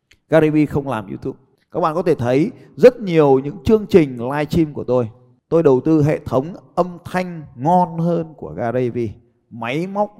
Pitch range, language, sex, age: 120-175 Hz, Vietnamese, male, 20-39